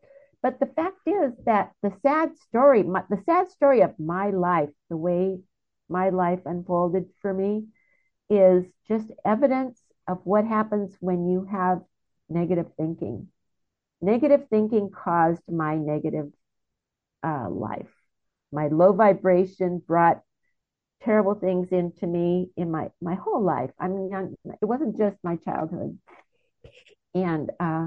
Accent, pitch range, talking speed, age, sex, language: American, 180-230 Hz, 130 wpm, 50-69, female, English